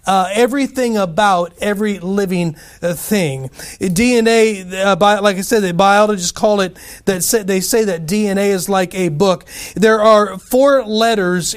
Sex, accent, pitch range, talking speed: male, American, 170-210 Hz, 160 wpm